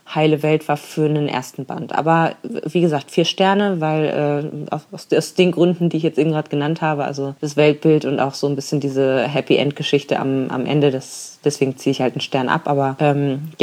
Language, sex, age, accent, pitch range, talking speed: German, female, 20-39, German, 150-175 Hz, 220 wpm